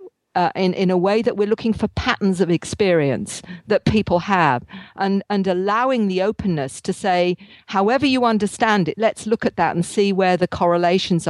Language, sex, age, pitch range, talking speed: English, female, 50-69, 180-225 Hz, 185 wpm